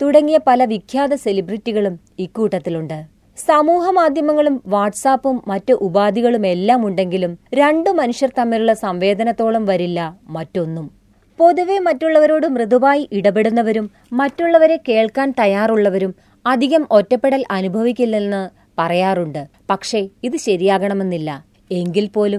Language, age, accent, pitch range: Malayalam, 20-39, native, 195-275 Hz